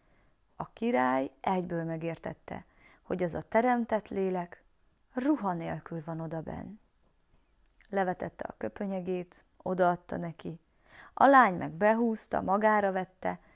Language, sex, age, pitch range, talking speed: Hungarian, female, 20-39, 170-235 Hz, 105 wpm